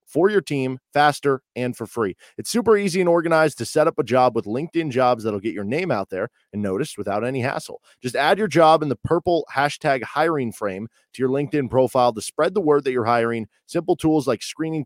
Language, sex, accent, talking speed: English, male, American, 225 wpm